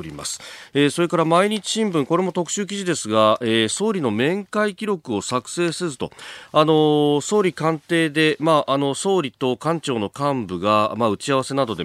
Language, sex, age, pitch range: Japanese, male, 40-59, 105-170 Hz